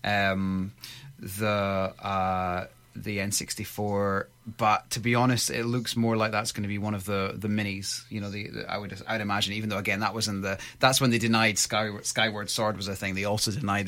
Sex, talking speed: male, 225 wpm